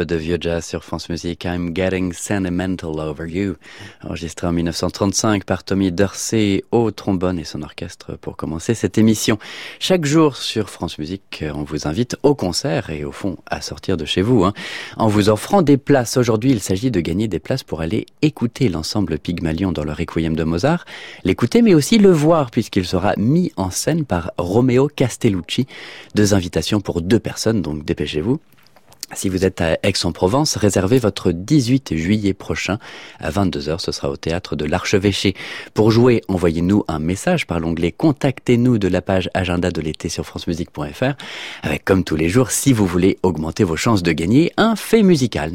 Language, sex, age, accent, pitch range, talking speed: French, male, 30-49, French, 85-115 Hz, 185 wpm